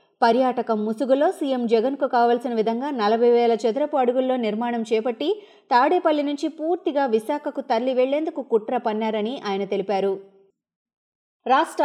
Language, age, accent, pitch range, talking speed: Telugu, 30-49, native, 215-285 Hz, 115 wpm